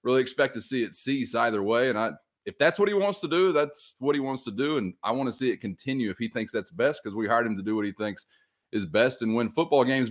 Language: English